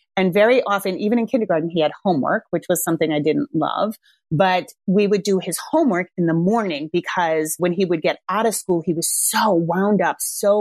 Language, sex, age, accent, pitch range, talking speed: English, female, 30-49, American, 175-220 Hz, 215 wpm